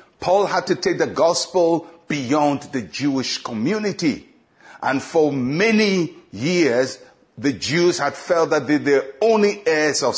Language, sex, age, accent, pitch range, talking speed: English, male, 60-79, Nigerian, 150-195 Hz, 145 wpm